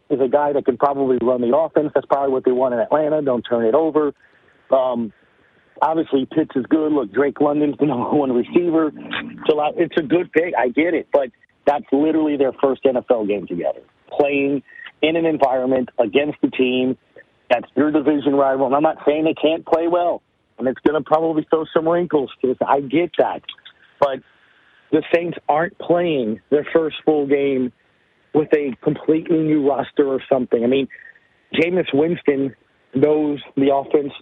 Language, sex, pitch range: English, male, 135-160 Hz